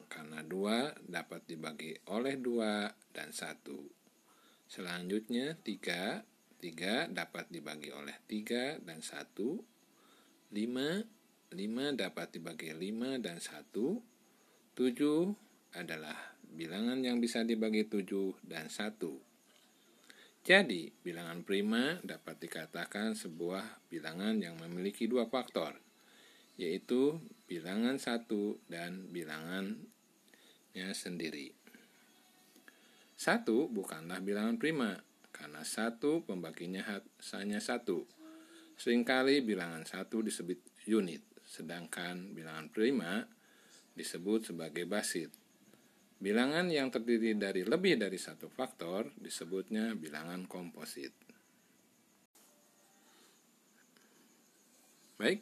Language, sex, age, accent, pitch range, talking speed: Indonesian, male, 50-69, native, 90-130 Hz, 90 wpm